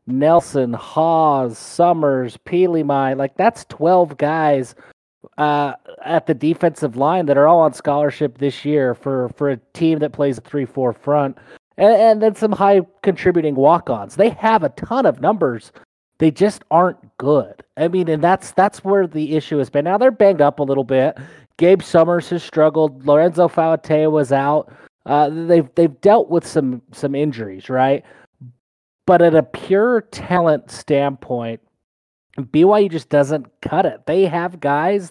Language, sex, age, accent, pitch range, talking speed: English, male, 30-49, American, 140-175 Hz, 165 wpm